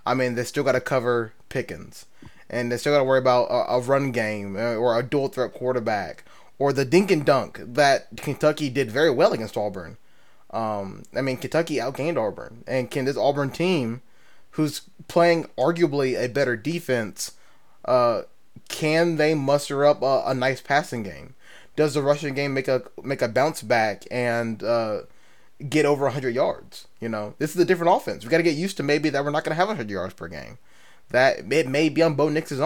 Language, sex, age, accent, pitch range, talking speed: English, male, 20-39, American, 125-155 Hz, 200 wpm